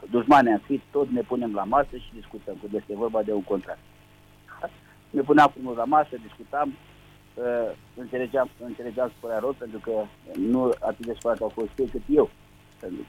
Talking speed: 175 wpm